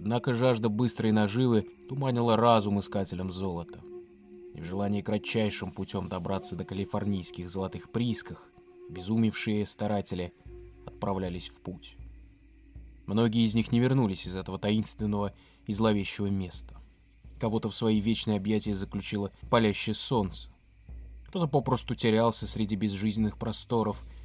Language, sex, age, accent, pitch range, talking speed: Russian, male, 20-39, native, 95-110 Hz, 120 wpm